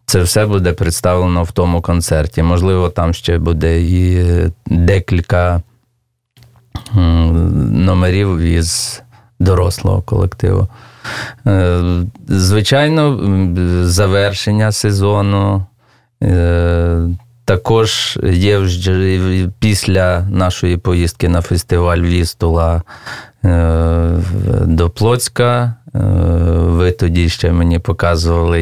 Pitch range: 85-100 Hz